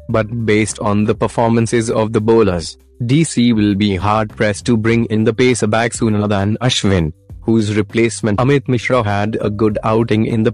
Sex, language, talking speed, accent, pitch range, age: male, Hindi, 180 wpm, native, 105-125 Hz, 30-49